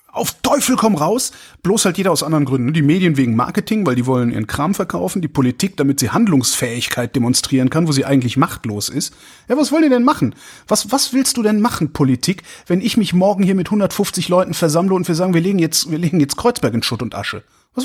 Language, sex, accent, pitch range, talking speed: German, male, German, 140-200 Hz, 225 wpm